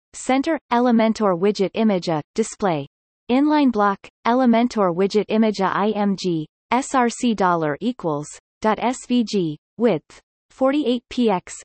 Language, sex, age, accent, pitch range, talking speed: English, female, 30-49, American, 180-240 Hz, 90 wpm